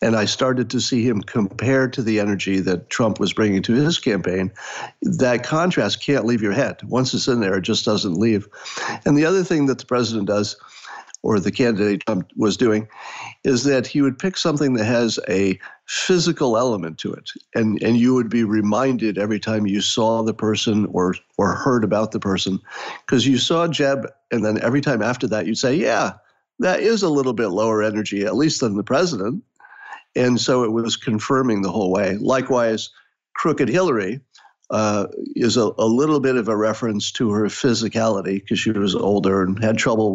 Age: 50-69